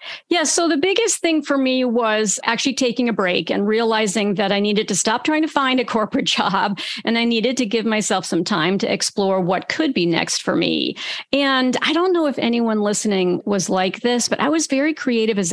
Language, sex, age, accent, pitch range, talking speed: English, female, 50-69, American, 220-285 Hz, 225 wpm